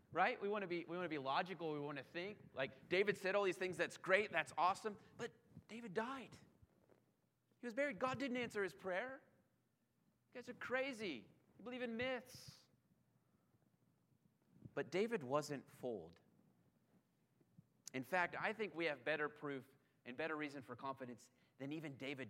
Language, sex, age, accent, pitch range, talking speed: English, male, 30-49, American, 130-180 Hz, 170 wpm